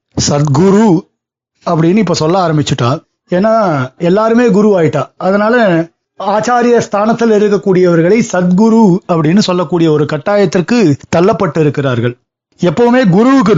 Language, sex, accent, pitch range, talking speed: Tamil, male, native, 155-215 Hz, 95 wpm